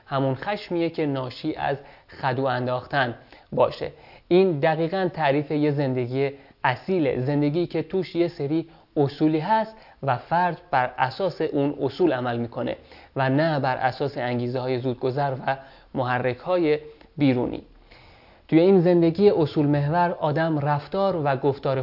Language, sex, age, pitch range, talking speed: Persian, male, 30-49, 135-170 Hz, 135 wpm